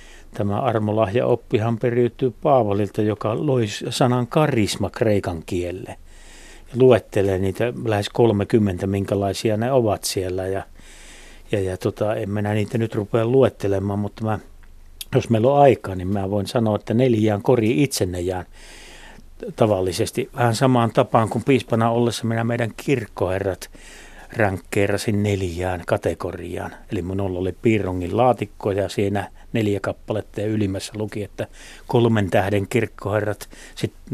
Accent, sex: native, male